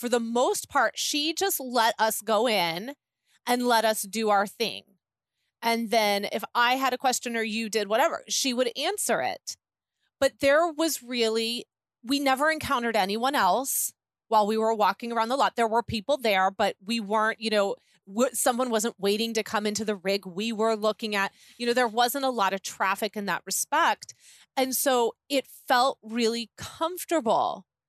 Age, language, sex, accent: 30-49, English, female, American